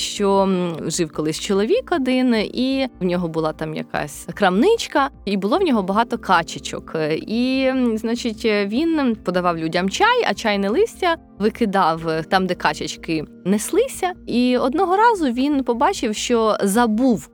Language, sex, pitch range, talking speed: Ukrainian, female, 180-250 Hz, 135 wpm